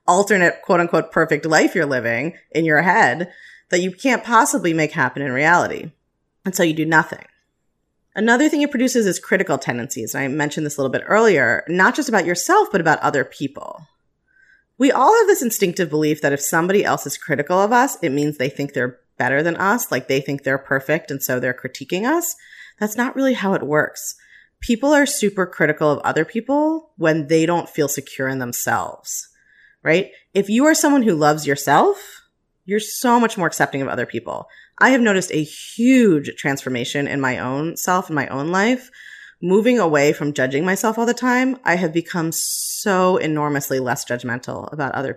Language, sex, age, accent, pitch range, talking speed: English, female, 30-49, American, 145-225 Hz, 190 wpm